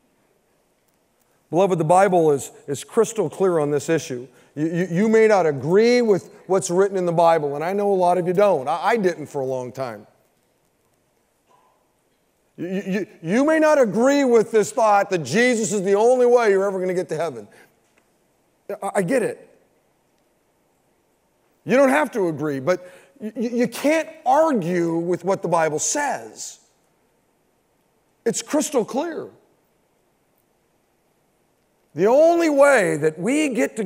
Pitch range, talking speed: 170-240 Hz, 155 wpm